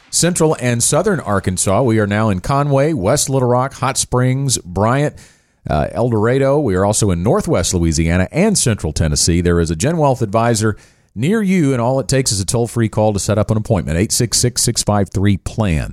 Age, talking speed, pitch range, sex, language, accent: 40-59, 185 wpm, 95-130 Hz, male, English, American